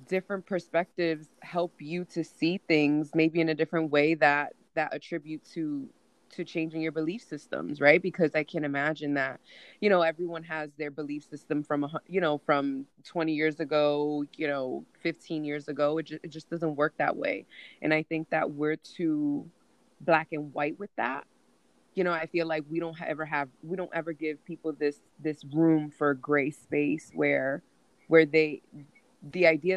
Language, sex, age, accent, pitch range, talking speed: English, female, 20-39, American, 145-165 Hz, 185 wpm